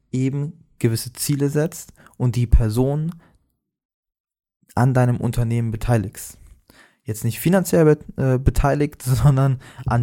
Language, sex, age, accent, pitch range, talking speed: German, male, 20-39, German, 115-135 Hz, 115 wpm